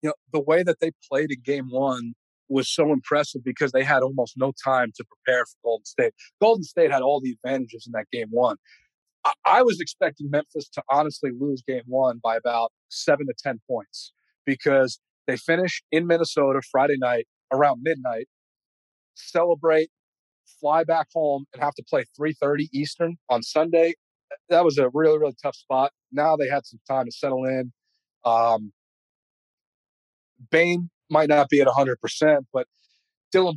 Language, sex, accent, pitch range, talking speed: English, male, American, 130-155 Hz, 170 wpm